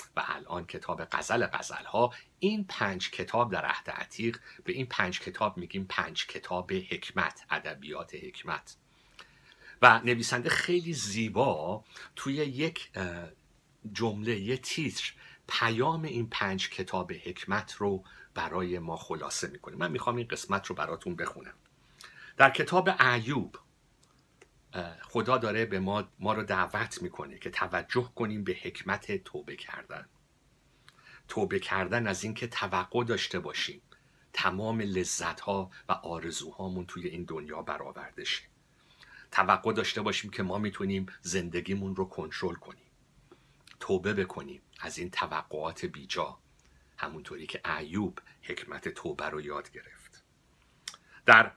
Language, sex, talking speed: Persian, male, 125 wpm